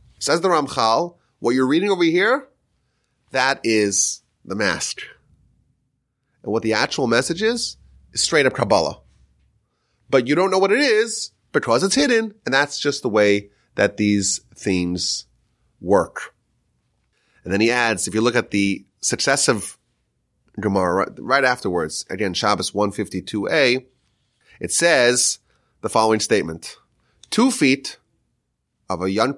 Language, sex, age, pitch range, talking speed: English, male, 30-49, 105-160 Hz, 135 wpm